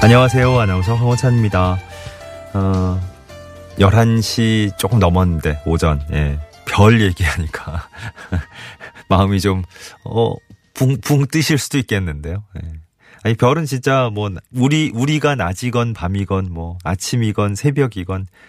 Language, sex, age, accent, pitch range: Korean, male, 30-49, native, 90-125 Hz